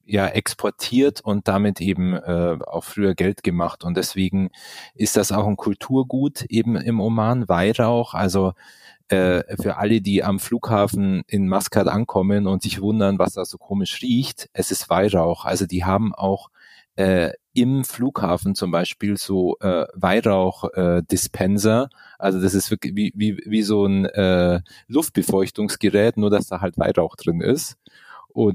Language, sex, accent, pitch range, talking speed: German, male, German, 95-110 Hz, 155 wpm